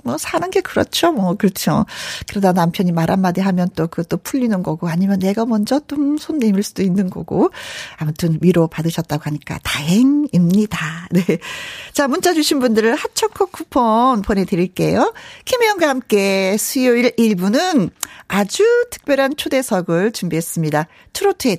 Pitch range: 175-280 Hz